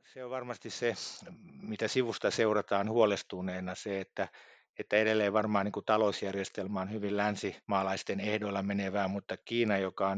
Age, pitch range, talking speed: 50-69, 95-105 Hz, 145 wpm